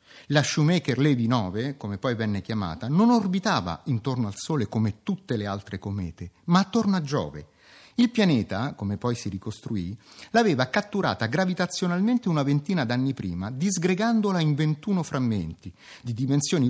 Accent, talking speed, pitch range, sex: native, 145 wpm, 110-175 Hz, male